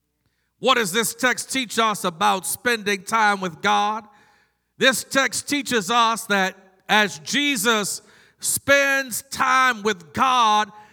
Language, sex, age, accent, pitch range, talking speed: English, male, 50-69, American, 200-265 Hz, 120 wpm